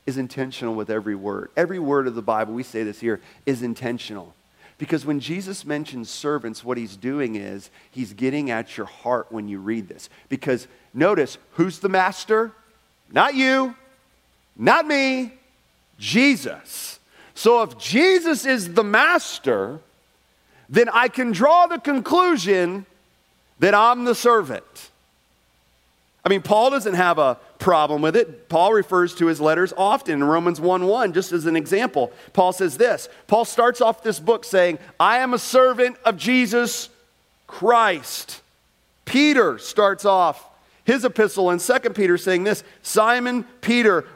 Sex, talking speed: male, 150 wpm